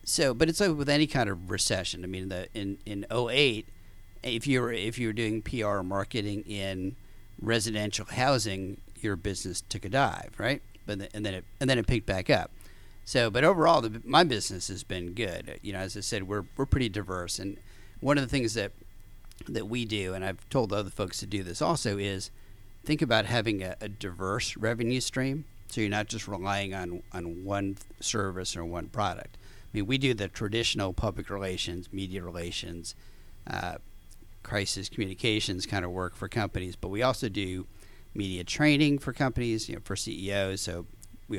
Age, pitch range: 40-59, 95-115 Hz